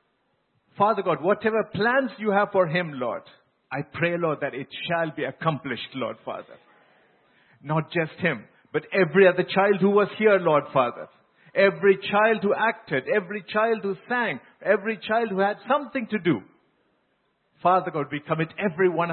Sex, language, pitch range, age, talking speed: male, English, 140-195 Hz, 50-69, 165 wpm